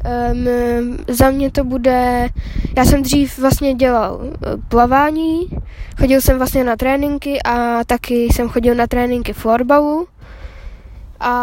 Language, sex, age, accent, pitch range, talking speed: Czech, female, 10-29, native, 240-275 Hz, 120 wpm